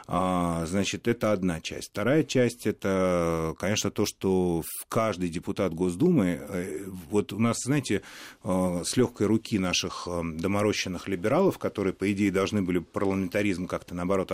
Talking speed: 130 wpm